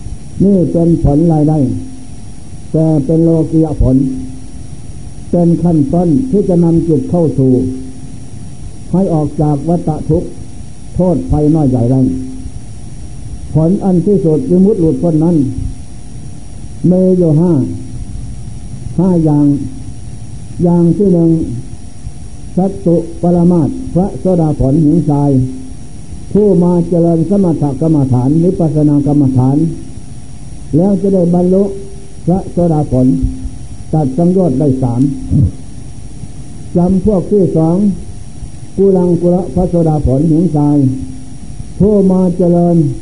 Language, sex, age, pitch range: Thai, male, 60-79, 130-175 Hz